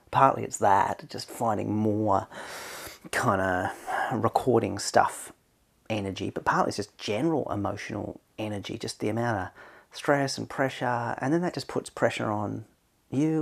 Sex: male